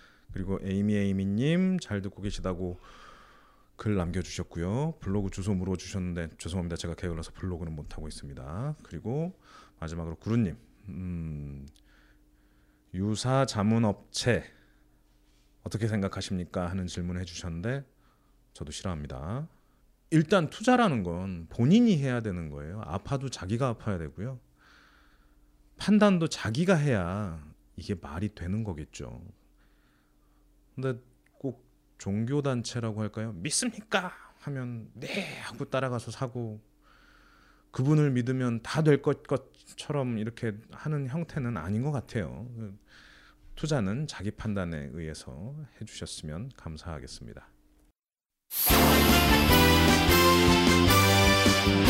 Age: 30-49